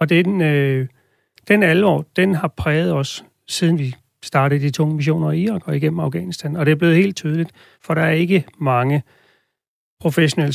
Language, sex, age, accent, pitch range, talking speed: Danish, male, 40-59, native, 150-175 Hz, 180 wpm